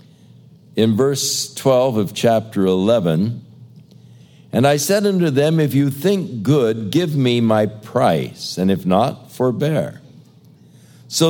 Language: English